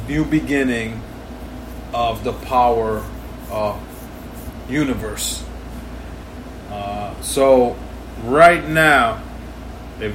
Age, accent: 20-39, American